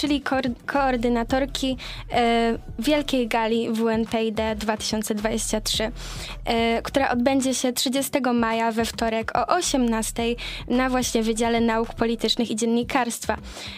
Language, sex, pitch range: Polish, female, 225-255 Hz